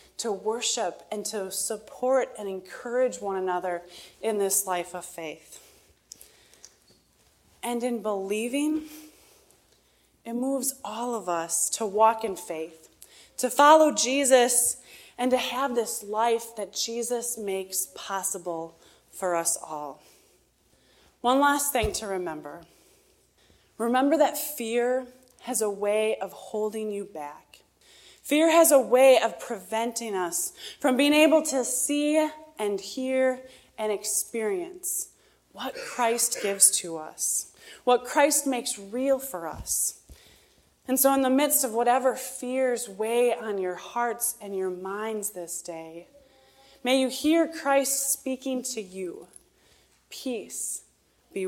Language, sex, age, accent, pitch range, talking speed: English, female, 20-39, American, 190-265 Hz, 125 wpm